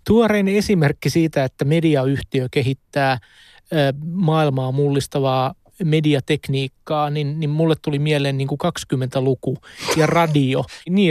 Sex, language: male, Finnish